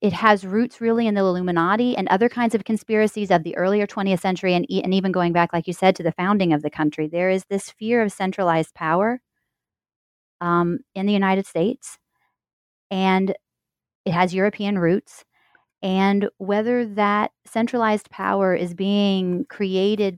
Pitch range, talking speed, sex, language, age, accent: 175-210 Hz, 170 wpm, female, English, 30-49, American